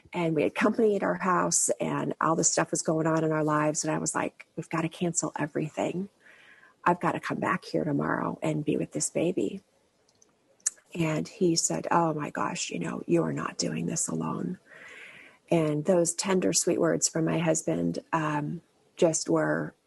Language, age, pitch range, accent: English, 40-59, 155-165 Hz, American